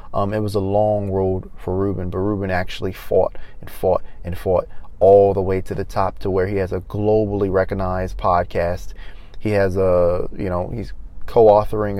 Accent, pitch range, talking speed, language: American, 95-105 Hz, 185 wpm, English